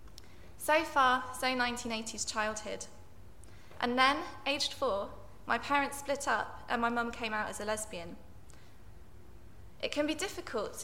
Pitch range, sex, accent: 200-255 Hz, female, British